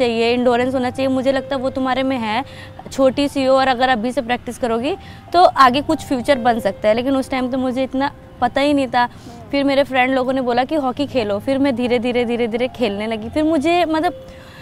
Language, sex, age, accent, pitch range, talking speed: Hindi, female, 20-39, native, 240-280 Hz, 235 wpm